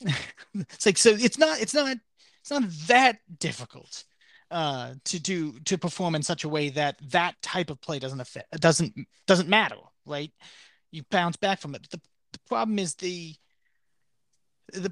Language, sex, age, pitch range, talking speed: English, male, 30-49, 150-195 Hz, 175 wpm